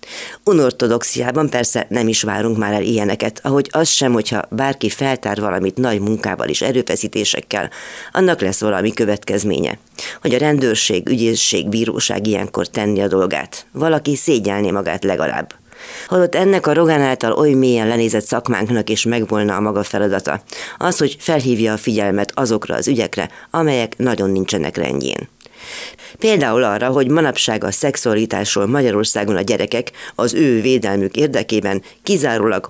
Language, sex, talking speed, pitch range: Hungarian, female, 140 wpm, 100-130 Hz